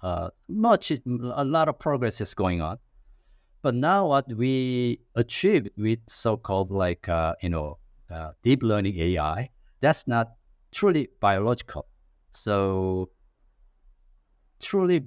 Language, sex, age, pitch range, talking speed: English, male, 50-69, 85-120 Hz, 120 wpm